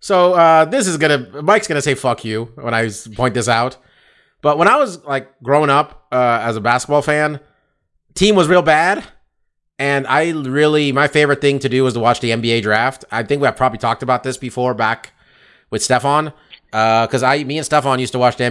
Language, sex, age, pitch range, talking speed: English, male, 30-49, 115-145 Hz, 225 wpm